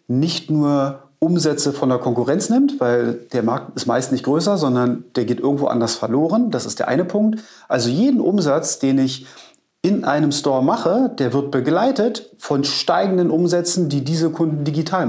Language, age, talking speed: German, 30-49, 175 wpm